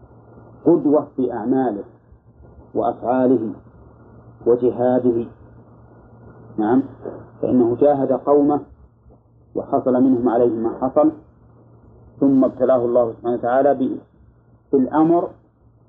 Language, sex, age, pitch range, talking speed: Arabic, male, 40-59, 120-145 Hz, 75 wpm